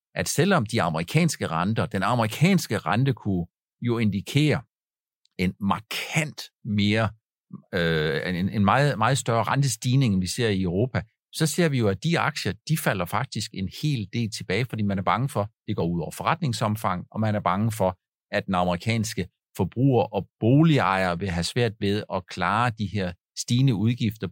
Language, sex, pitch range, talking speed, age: Danish, male, 100-135 Hz, 175 wpm, 50-69